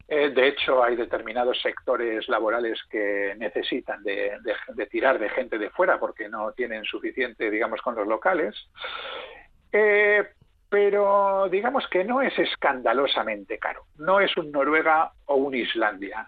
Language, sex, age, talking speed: Spanish, male, 50-69, 145 wpm